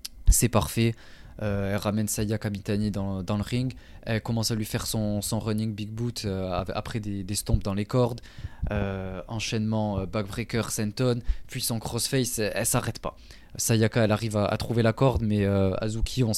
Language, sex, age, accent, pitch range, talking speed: French, male, 20-39, French, 100-120 Hz, 195 wpm